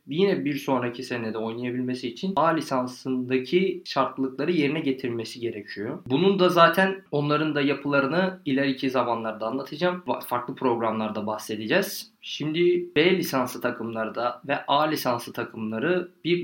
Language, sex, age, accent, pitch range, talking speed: Turkish, male, 20-39, native, 120-155 Hz, 120 wpm